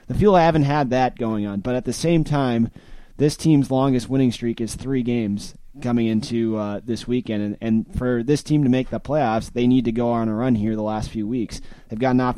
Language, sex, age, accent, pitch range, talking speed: English, male, 20-39, American, 115-135 Hz, 245 wpm